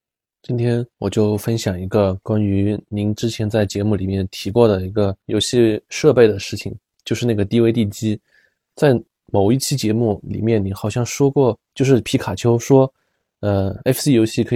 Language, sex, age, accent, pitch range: Chinese, male, 20-39, native, 100-130 Hz